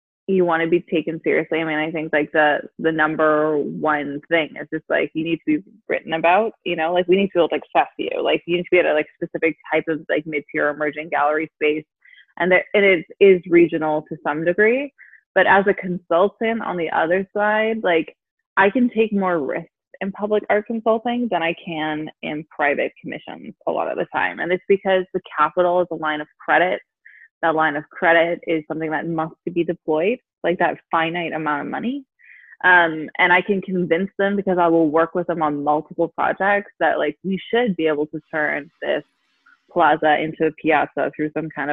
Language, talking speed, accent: English, 215 wpm, American